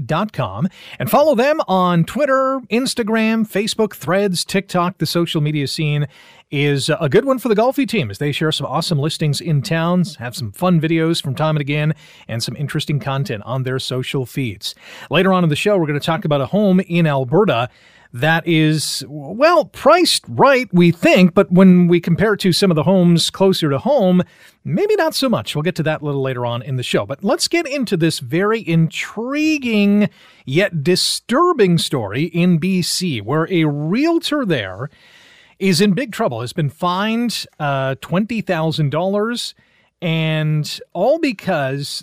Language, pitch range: English, 150-205 Hz